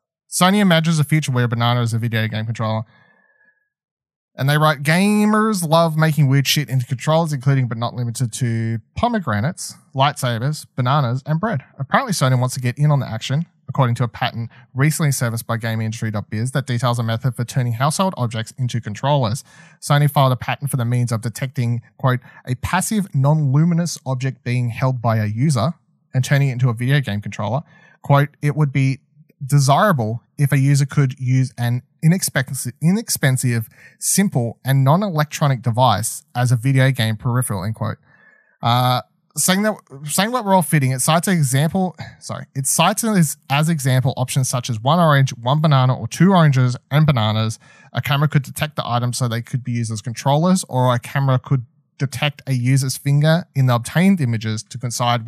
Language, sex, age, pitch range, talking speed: English, male, 30-49, 120-155 Hz, 180 wpm